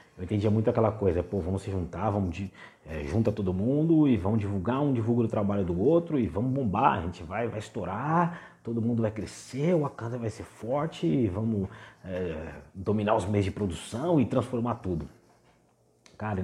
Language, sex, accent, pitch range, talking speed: Portuguese, male, Brazilian, 95-120 Hz, 185 wpm